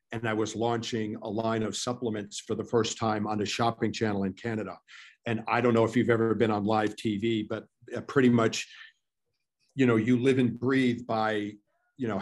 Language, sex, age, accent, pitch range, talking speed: English, male, 50-69, American, 110-125 Hz, 200 wpm